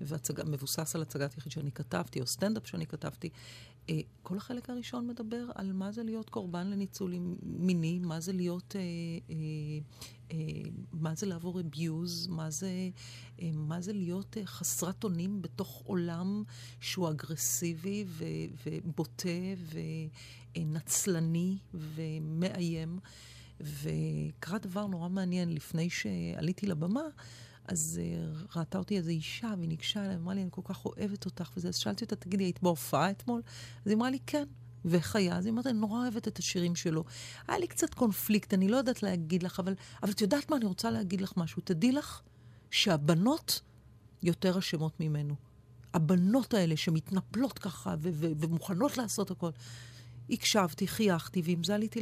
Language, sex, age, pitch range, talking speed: Hebrew, female, 40-59, 155-195 Hz, 145 wpm